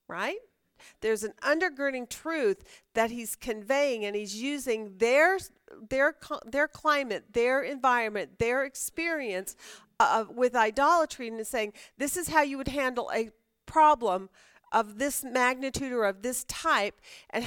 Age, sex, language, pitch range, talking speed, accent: 40-59, female, English, 215-280 Hz, 135 wpm, American